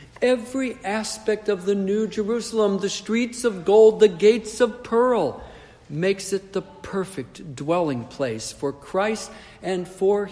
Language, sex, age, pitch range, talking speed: English, male, 60-79, 135-205 Hz, 140 wpm